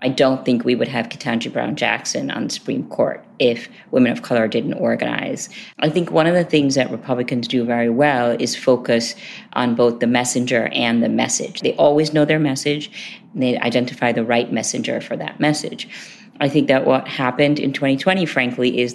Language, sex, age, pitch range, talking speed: English, female, 40-59, 120-145 Hz, 190 wpm